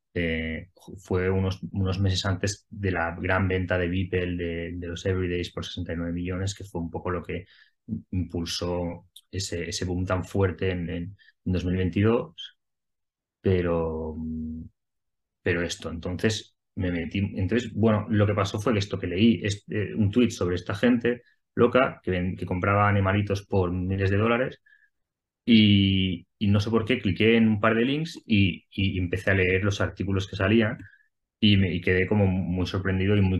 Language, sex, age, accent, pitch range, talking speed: Spanish, male, 20-39, Spanish, 90-105 Hz, 170 wpm